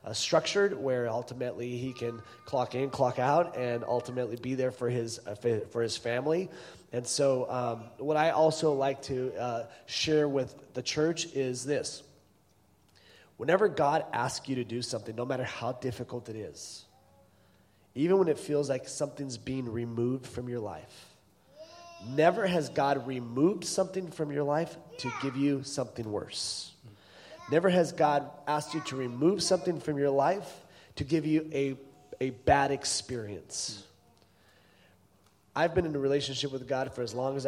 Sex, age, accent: male, 30-49, American